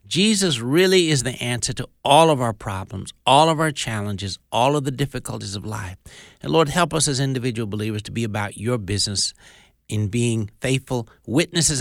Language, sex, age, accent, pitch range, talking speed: English, male, 60-79, American, 100-135 Hz, 185 wpm